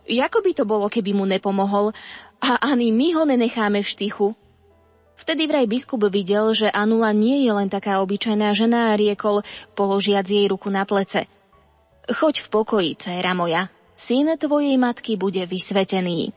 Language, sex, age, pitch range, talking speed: Slovak, female, 20-39, 200-250 Hz, 160 wpm